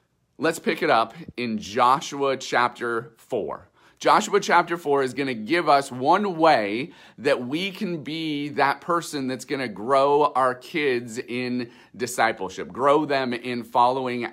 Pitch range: 130-165 Hz